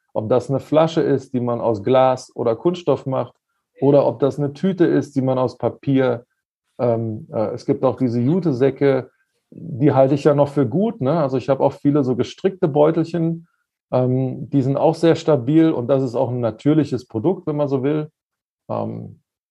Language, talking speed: German, 190 wpm